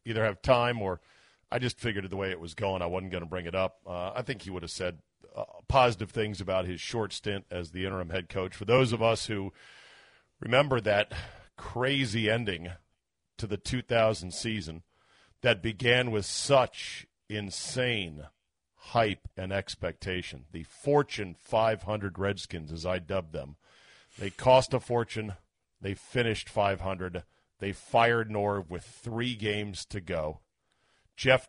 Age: 50-69